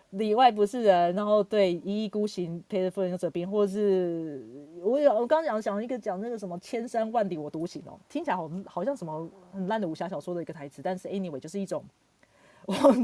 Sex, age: female, 30-49